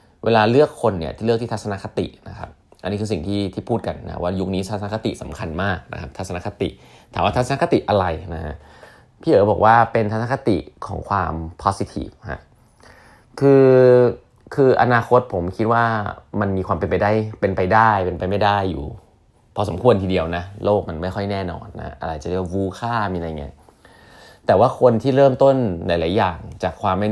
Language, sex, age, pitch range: Thai, male, 20-39, 90-115 Hz